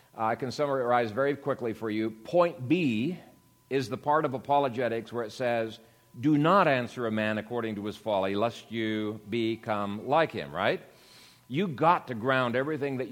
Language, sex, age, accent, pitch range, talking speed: English, male, 50-69, American, 115-150 Hz, 175 wpm